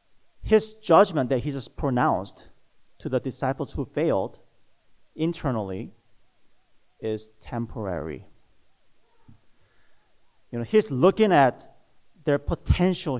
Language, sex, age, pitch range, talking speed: English, male, 40-59, 115-155 Hz, 95 wpm